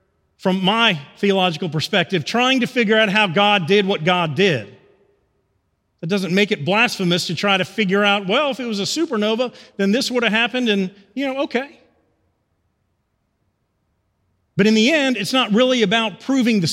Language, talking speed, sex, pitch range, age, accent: English, 175 wpm, male, 170-225 Hz, 40-59, American